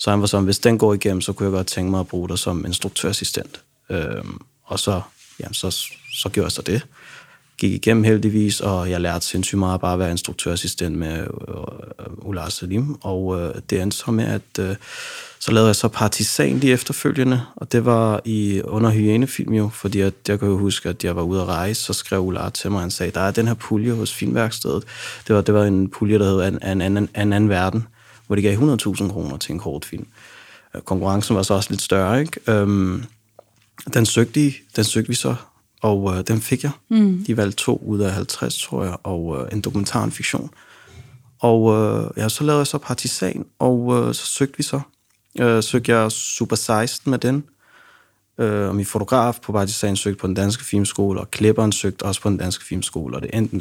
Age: 30-49